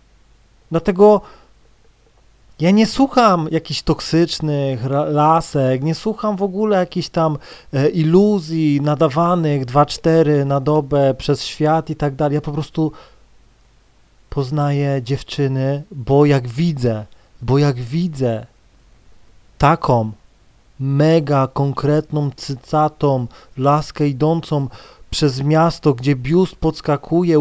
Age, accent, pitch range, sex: 30-49, native, 135-170 Hz, male